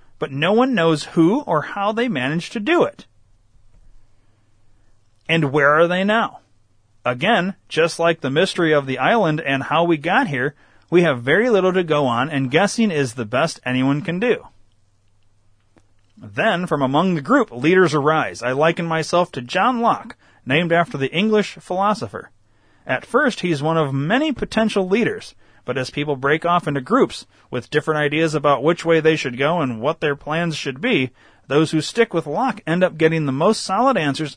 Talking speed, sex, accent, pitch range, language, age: 185 wpm, male, American, 125-180 Hz, English, 30-49